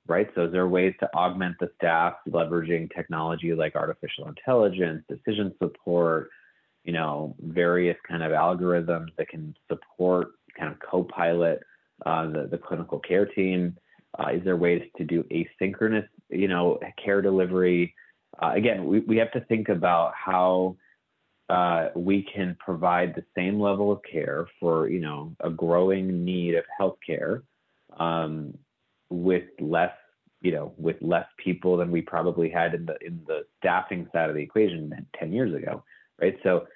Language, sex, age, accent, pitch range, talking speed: English, male, 30-49, American, 85-95 Hz, 160 wpm